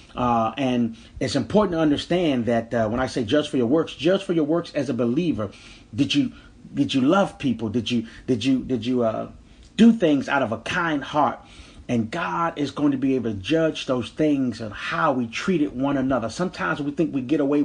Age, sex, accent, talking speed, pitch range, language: 30-49, male, American, 220 wpm, 120-180 Hz, English